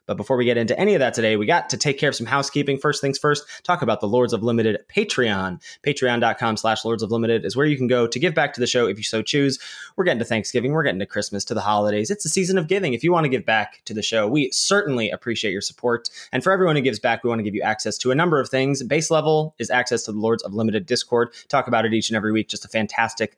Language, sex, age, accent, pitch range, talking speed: English, male, 20-39, American, 110-140 Hz, 295 wpm